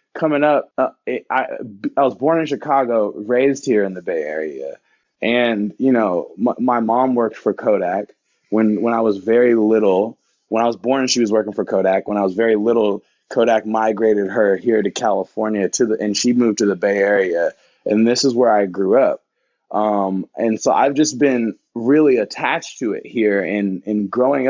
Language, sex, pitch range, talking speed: English, male, 105-135 Hz, 200 wpm